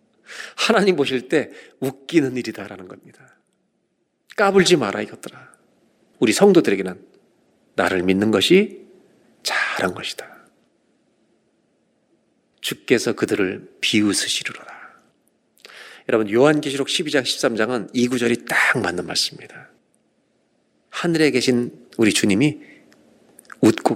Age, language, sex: 40-59, Korean, male